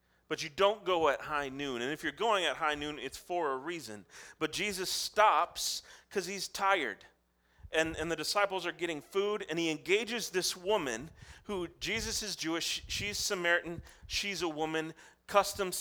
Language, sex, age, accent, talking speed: English, male, 30-49, American, 175 wpm